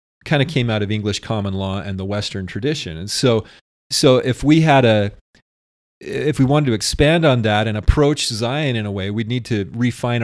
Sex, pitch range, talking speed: male, 100-125 Hz, 210 wpm